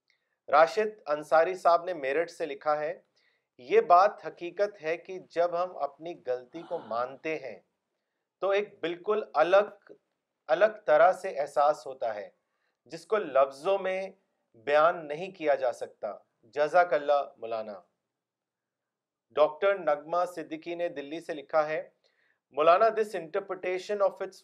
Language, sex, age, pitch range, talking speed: Urdu, male, 40-59, 150-190 Hz, 130 wpm